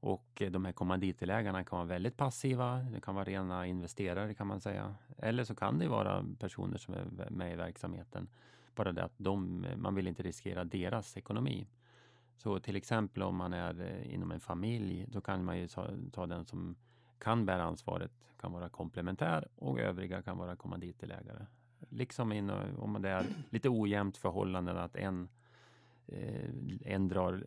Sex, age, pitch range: male, 30-49, 90-120 Hz